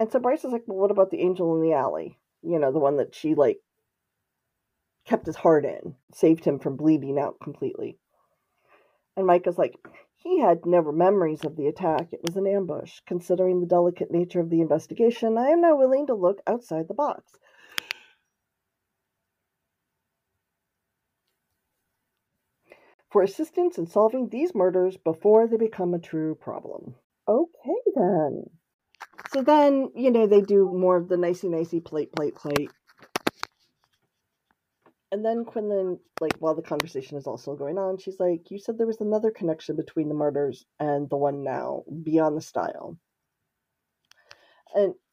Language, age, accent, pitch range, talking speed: English, 40-59, American, 160-225 Hz, 155 wpm